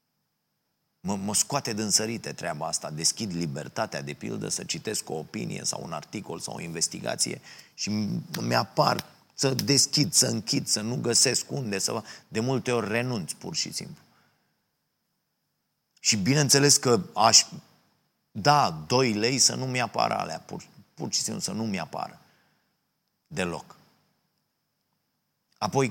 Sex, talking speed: male, 135 wpm